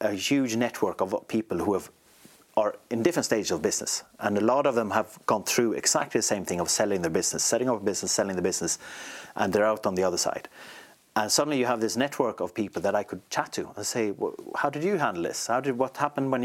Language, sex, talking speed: English, male, 250 wpm